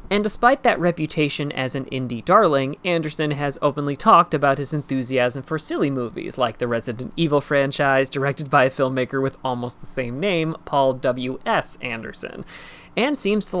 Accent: American